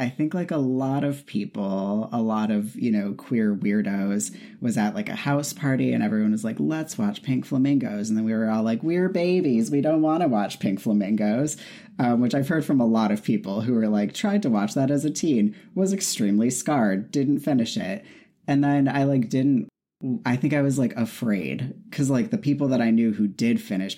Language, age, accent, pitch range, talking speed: English, 30-49, American, 110-180 Hz, 225 wpm